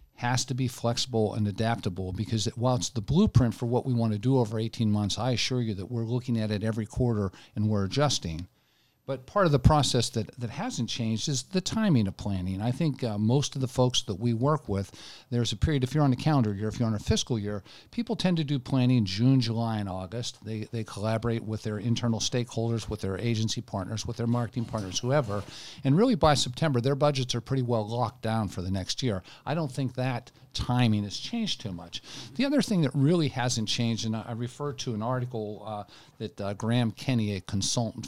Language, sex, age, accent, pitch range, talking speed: English, male, 50-69, American, 110-135 Hz, 225 wpm